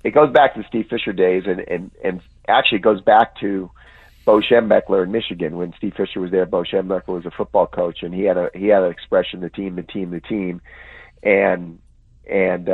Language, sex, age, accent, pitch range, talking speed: English, male, 50-69, American, 90-105 Hz, 215 wpm